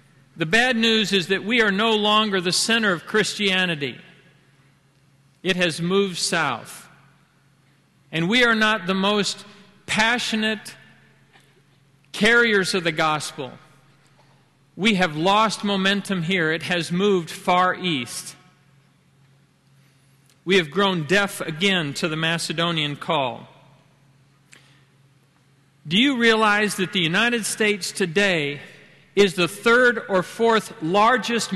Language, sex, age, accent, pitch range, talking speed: English, male, 50-69, American, 150-210 Hz, 115 wpm